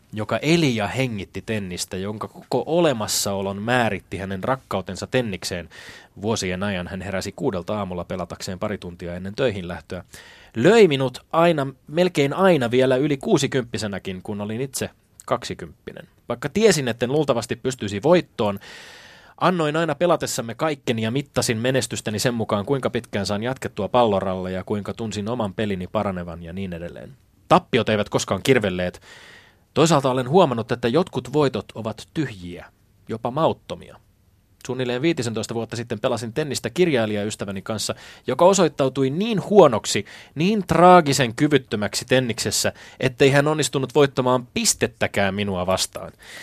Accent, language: native, Finnish